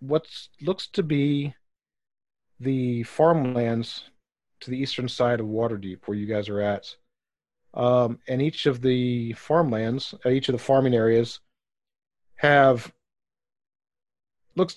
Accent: American